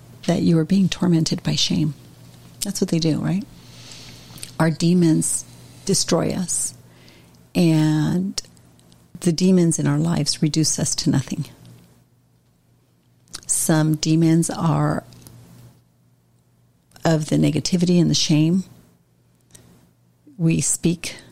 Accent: American